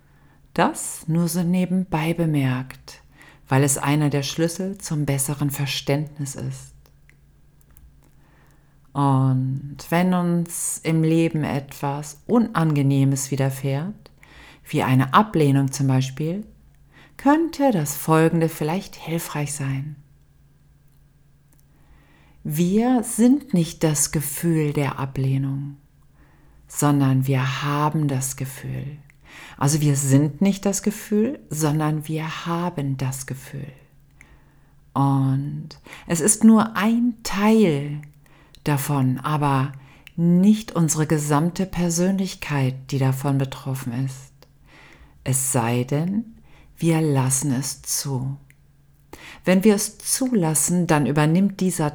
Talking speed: 100 wpm